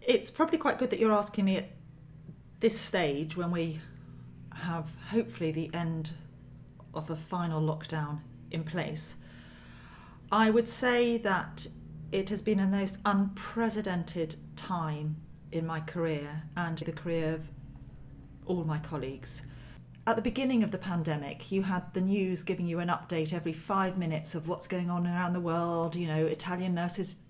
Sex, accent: female, British